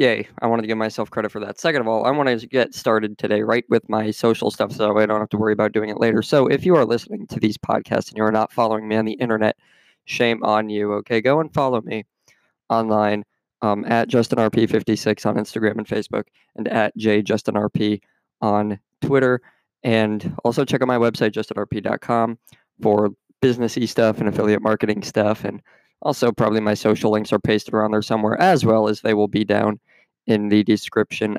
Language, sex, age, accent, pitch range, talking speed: English, male, 20-39, American, 105-120 Hz, 200 wpm